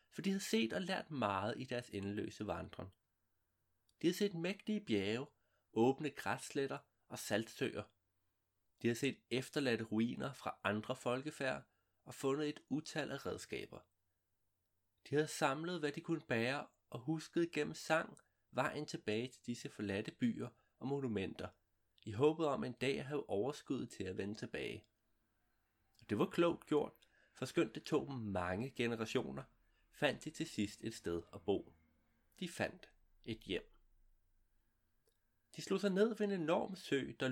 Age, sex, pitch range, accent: 30-49, male, 100-150 Hz, native